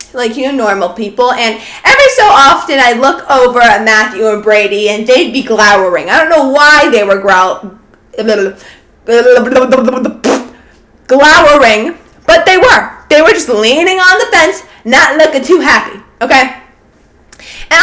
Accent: American